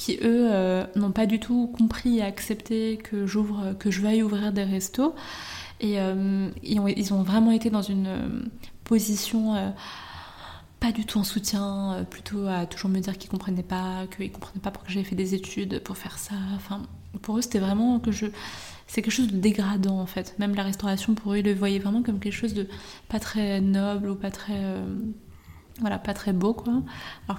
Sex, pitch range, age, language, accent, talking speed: female, 195-220 Hz, 20-39, French, French, 210 wpm